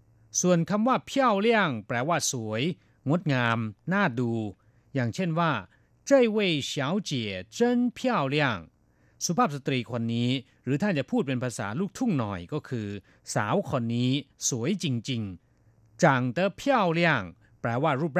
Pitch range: 115-175 Hz